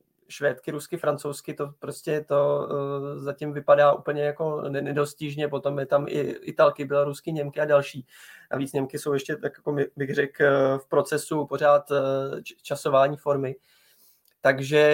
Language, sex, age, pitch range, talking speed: Czech, male, 20-39, 140-150 Hz, 135 wpm